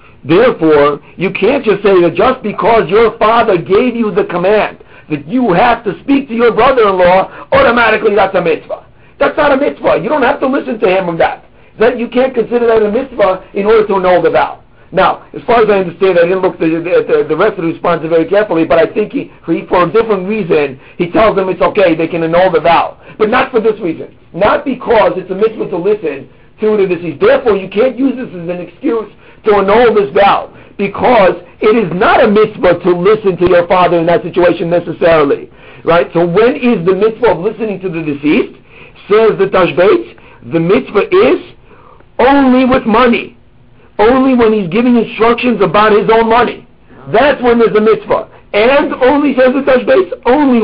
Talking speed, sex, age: 200 wpm, male, 50-69